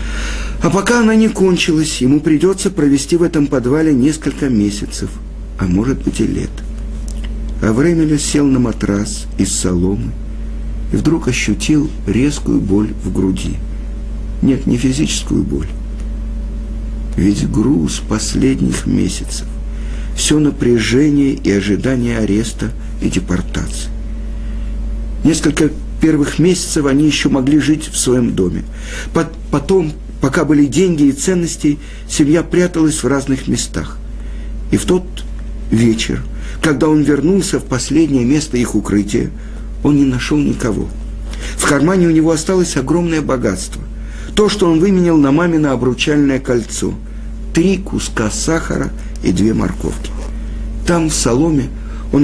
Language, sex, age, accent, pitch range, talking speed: Russian, male, 50-69, native, 115-160 Hz, 125 wpm